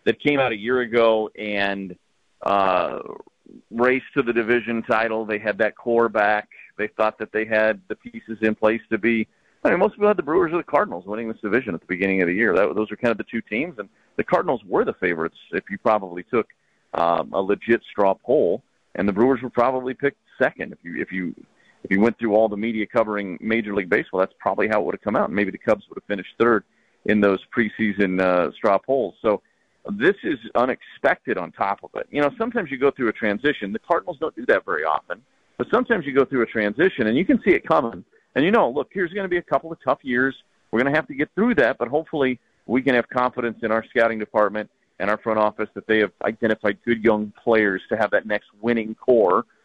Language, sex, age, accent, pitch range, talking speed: English, male, 40-59, American, 105-125 Hz, 240 wpm